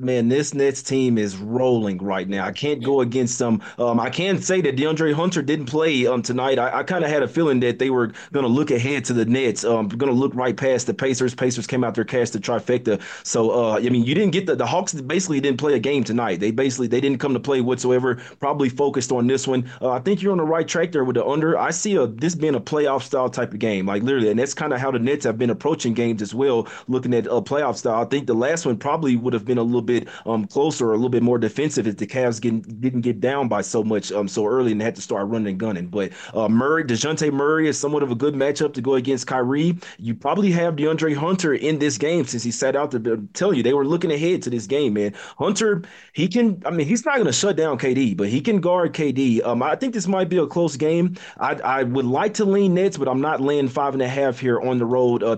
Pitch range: 120-150 Hz